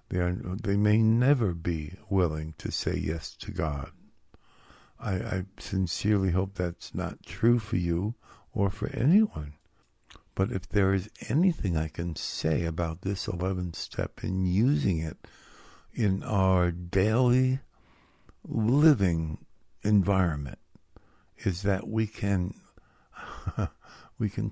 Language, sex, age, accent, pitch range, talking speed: English, male, 60-79, American, 85-110 Hz, 120 wpm